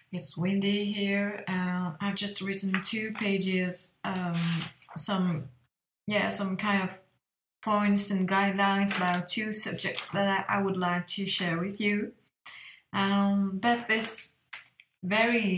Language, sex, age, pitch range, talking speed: English, female, 20-39, 180-200 Hz, 125 wpm